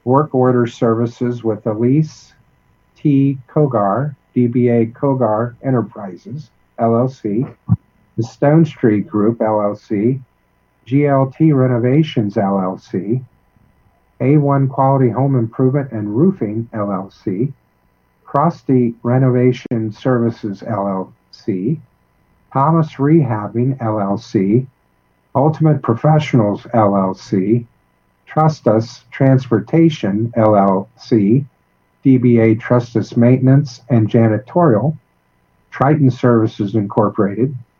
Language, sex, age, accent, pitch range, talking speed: English, male, 50-69, American, 105-135 Hz, 75 wpm